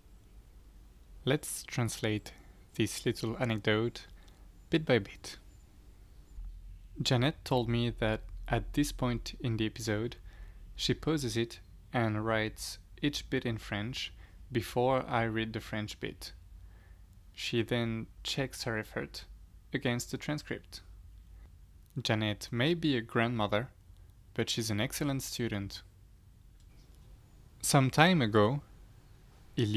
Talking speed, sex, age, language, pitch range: 110 wpm, male, 20-39, French, 90-125 Hz